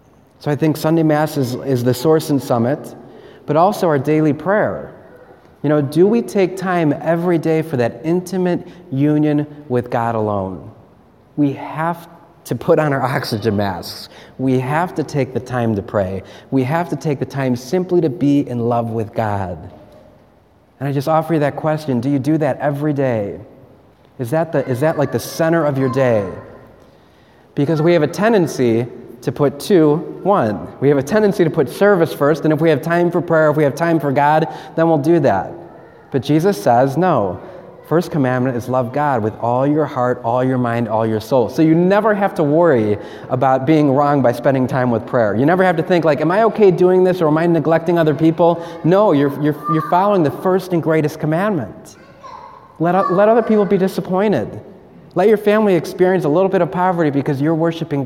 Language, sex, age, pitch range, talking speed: English, male, 30-49, 130-170 Hz, 200 wpm